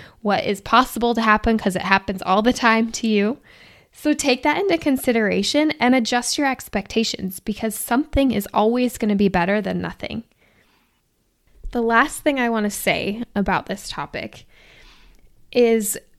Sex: female